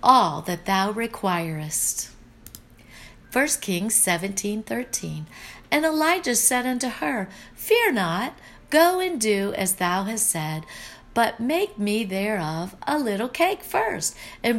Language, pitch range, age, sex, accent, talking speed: English, 170-255 Hz, 50-69, female, American, 125 wpm